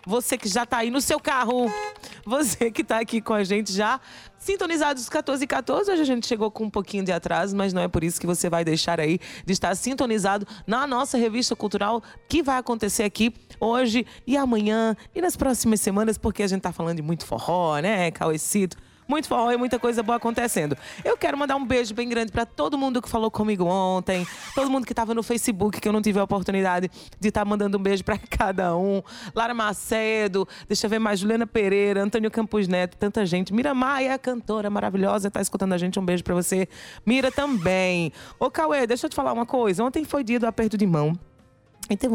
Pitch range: 185-255 Hz